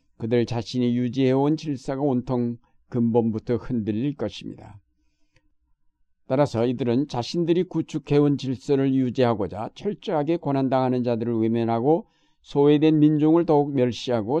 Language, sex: Korean, male